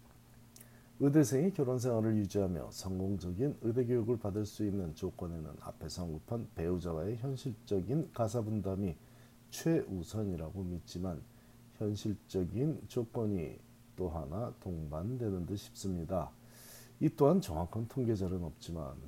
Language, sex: Korean, male